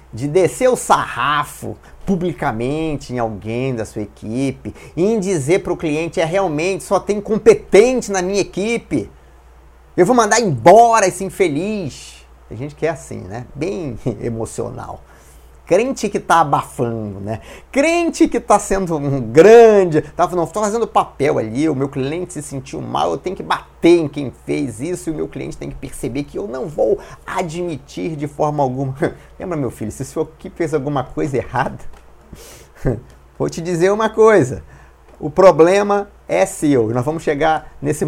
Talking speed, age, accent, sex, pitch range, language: 165 wpm, 30-49, Brazilian, male, 115-185 Hz, Portuguese